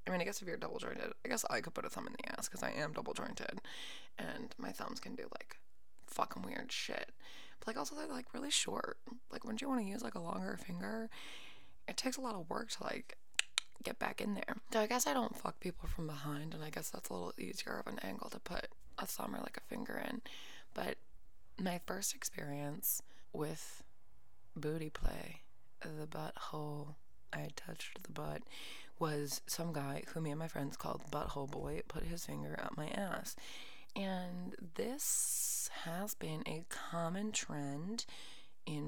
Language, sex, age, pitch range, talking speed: English, female, 20-39, 150-235 Hz, 195 wpm